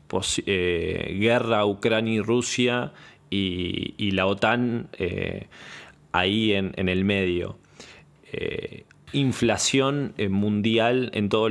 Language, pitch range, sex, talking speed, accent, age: Spanish, 95-125 Hz, male, 100 wpm, Argentinian, 20-39